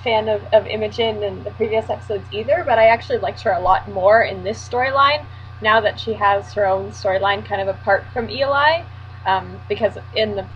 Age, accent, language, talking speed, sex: 10-29, American, English, 205 wpm, female